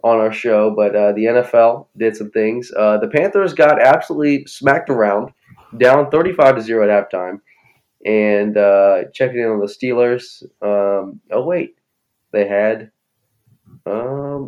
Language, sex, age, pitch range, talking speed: English, male, 20-39, 105-125 Hz, 145 wpm